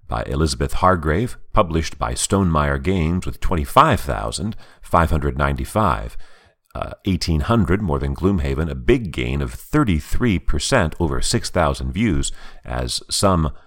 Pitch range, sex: 70-95 Hz, male